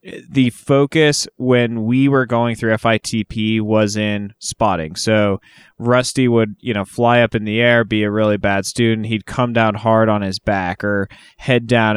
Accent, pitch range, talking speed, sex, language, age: American, 105-125 Hz, 180 wpm, male, English, 20-39